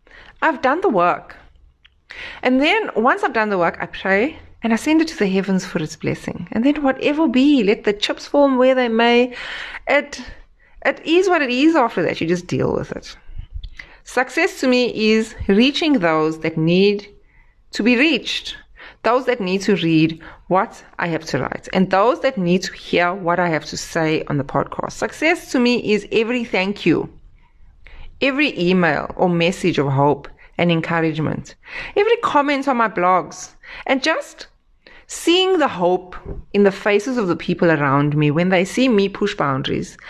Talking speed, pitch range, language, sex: 180 wpm, 175-275 Hz, English, female